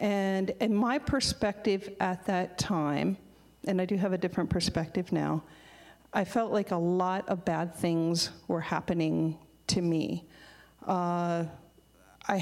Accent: American